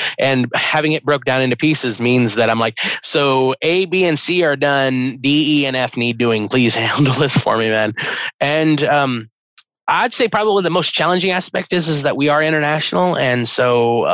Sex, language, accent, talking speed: male, English, American, 205 wpm